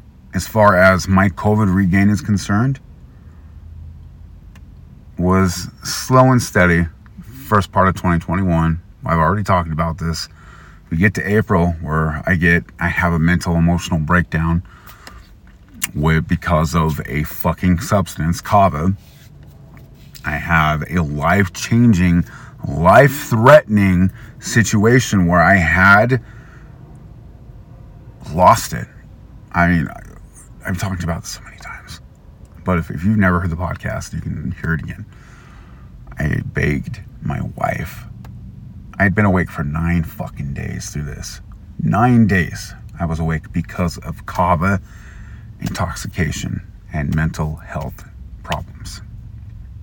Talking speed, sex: 125 wpm, male